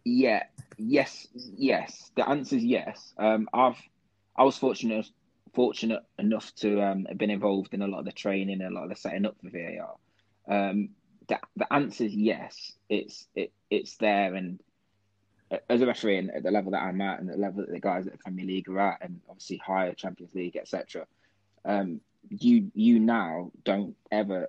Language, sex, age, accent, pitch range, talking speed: English, male, 20-39, British, 95-105 Hz, 195 wpm